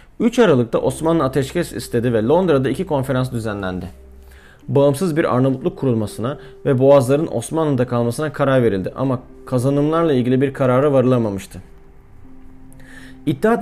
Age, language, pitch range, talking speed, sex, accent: 40-59, Turkish, 120-160 Hz, 120 wpm, male, native